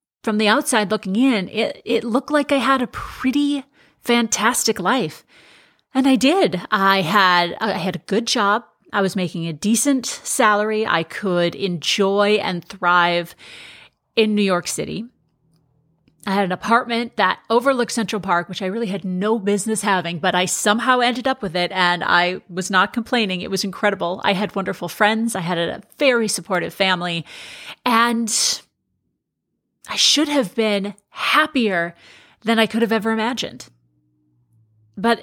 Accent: American